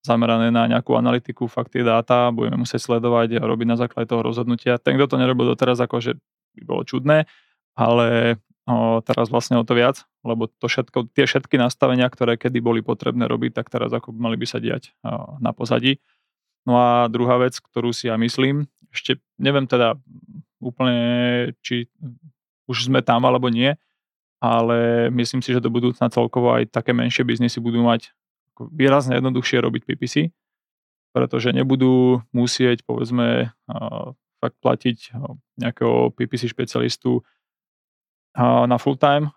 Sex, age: male, 20-39